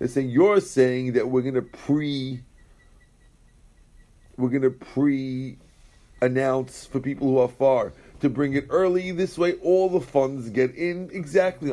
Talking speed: 155 wpm